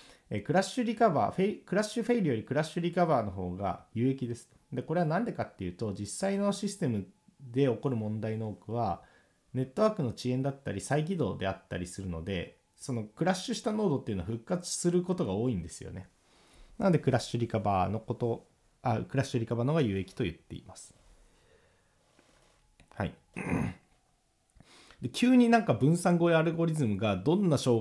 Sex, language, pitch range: male, Japanese, 105-180 Hz